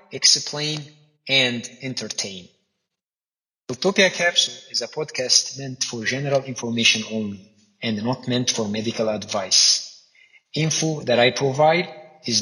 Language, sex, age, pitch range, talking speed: English, male, 30-49, 115-150 Hz, 115 wpm